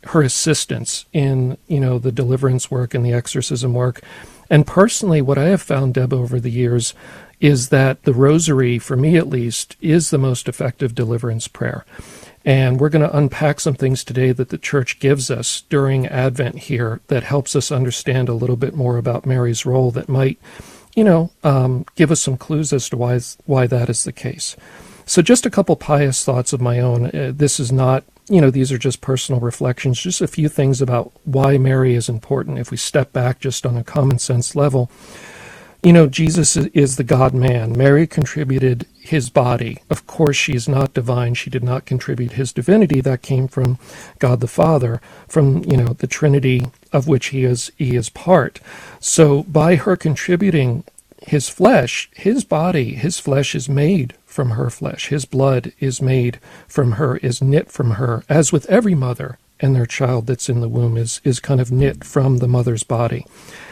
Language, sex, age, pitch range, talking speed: English, male, 50-69, 125-150 Hz, 190 wpm